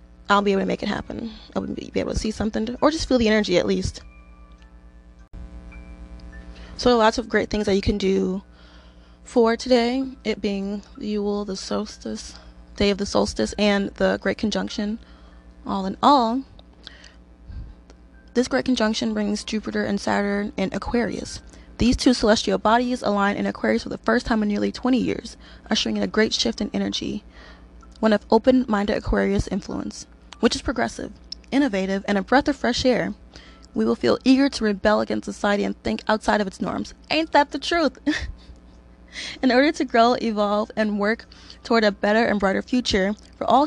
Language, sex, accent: English, female, American